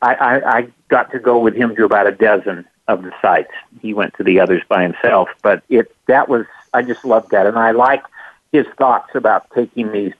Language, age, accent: English, 50-69, American